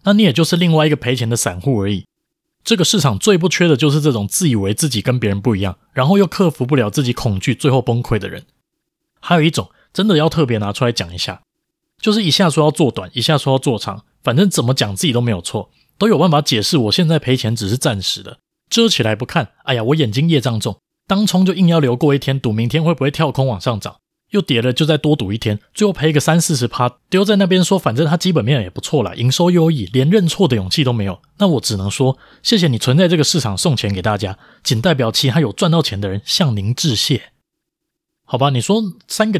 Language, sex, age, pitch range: Chinese, male, 20-39, 115-170 Hz